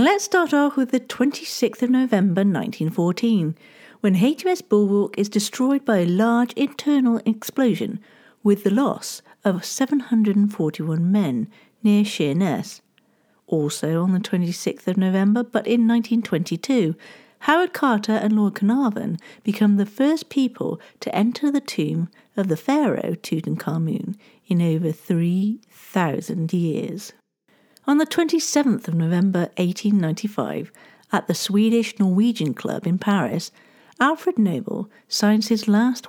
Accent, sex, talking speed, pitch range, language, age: British, female, 125 wpm, 185-240 Hz, English, 50-69